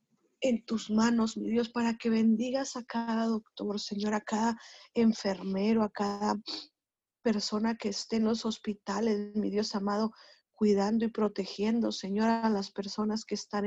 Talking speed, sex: 155 wpm, female